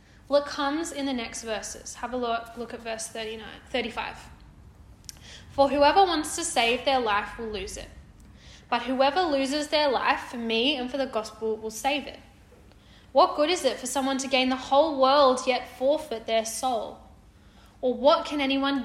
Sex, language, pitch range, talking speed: female, English, 240-325 Hz, 180 wpm